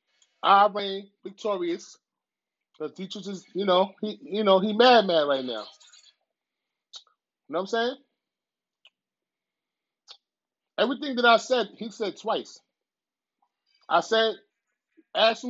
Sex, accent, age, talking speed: male, American, 30-49, 120 wpm